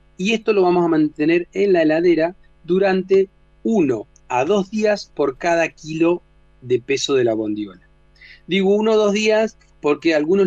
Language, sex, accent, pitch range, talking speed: Spanish, male, Argentinian, 140-200 Hz, 170 wpm